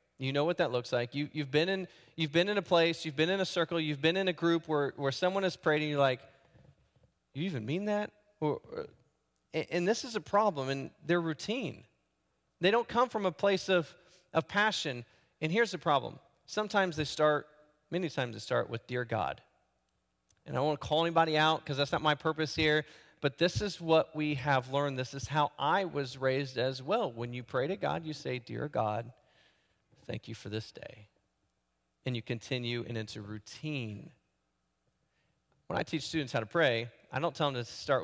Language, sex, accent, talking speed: English, male, American, 210 wpm